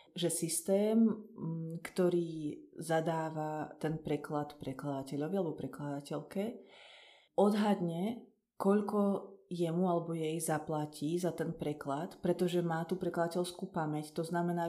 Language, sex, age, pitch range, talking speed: Slovak, female, 30-49, 155-175 Hz, 100 wpm